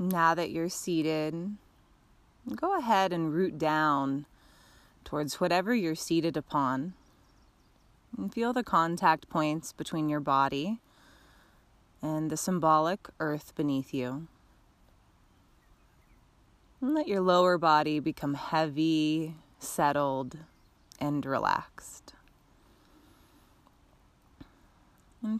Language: English